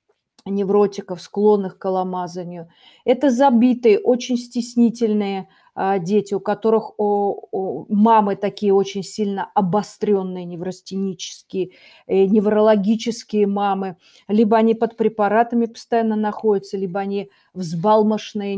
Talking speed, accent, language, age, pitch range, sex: 90 wpm, native, Russian, 40-59, 195-230 Hz, female